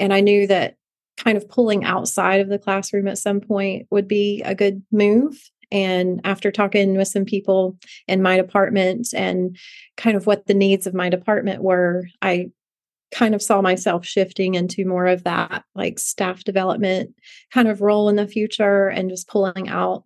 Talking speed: 180 wpm